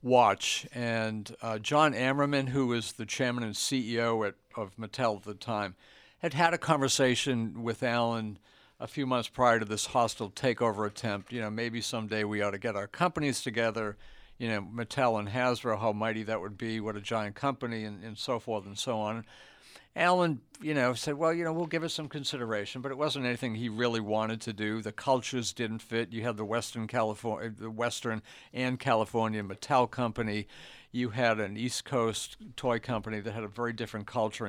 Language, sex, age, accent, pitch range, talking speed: English, male, 60-79, American, 110-130 Hz, 195 wpm